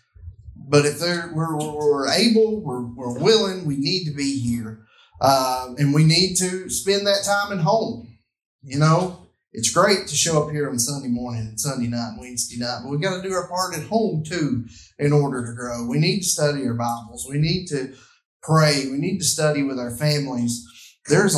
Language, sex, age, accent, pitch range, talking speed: English, male, 30-49, American, 120-175 Hz, 200 wpm